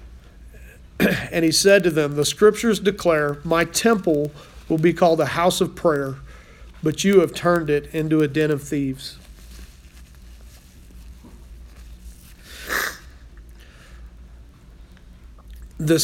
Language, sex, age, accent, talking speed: English, male, 40-59, American, 105 wpm